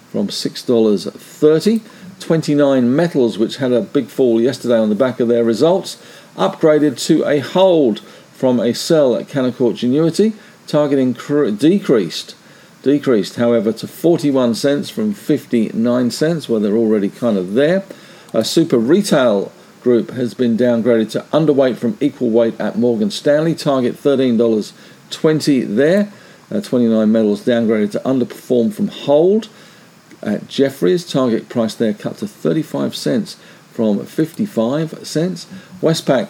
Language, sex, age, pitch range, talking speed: English, male, 50-69, 115-165 Hz, 135 wpm